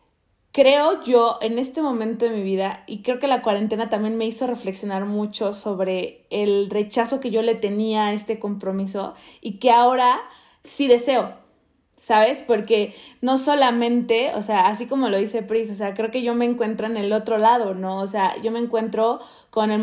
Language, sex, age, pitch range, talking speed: Spanish, female, 20-39, 210-265 Hz, 190 wpm